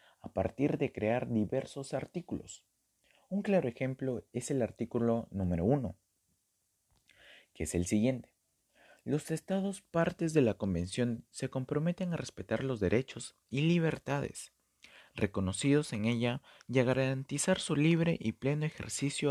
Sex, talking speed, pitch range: male, 135 wpm, 105-140 Hz